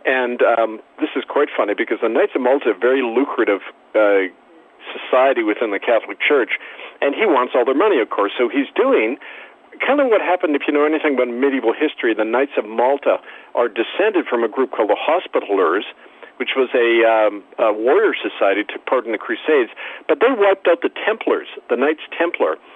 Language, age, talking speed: English, 50-69, 200 wpm